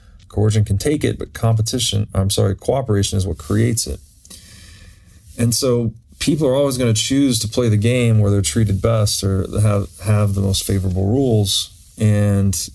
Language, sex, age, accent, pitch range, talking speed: English, male, 30-49, American, 80-110 Hz, 175 wpm